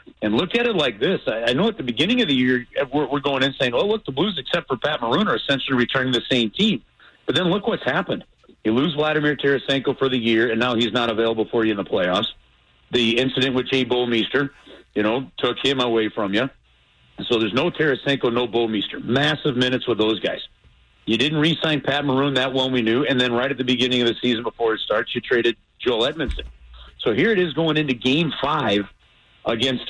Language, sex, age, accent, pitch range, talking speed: English, male, 40-59, American, 115-135 Hz, 225 wpm